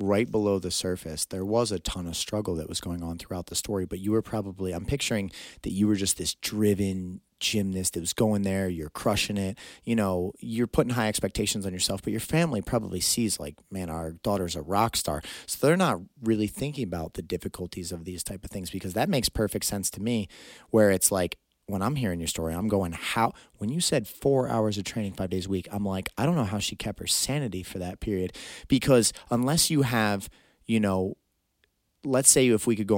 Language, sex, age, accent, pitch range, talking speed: English, male, 30-49, American, 95-110 Hz, 225 wpm